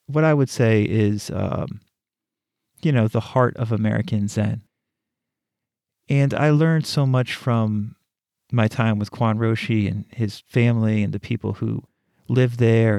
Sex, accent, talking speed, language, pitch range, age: male, American, 150 wpm, English, 110-125 Hz, 40-59